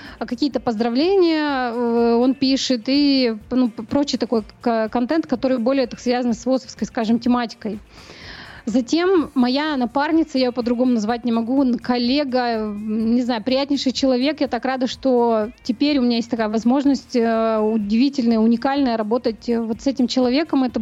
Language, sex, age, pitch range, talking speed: Russian, female, 20-39, 230-270 Hz, 140 wpm